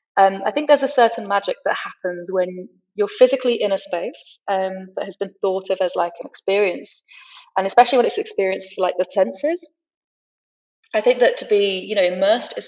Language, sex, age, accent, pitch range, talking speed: English, female, 20-39, British, 180-240 Hz, 205 wpm